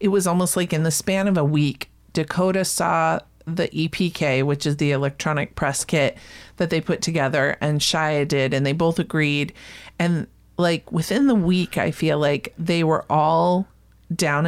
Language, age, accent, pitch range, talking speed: English, 40-59, American, 150-180 Hz, 180 wpm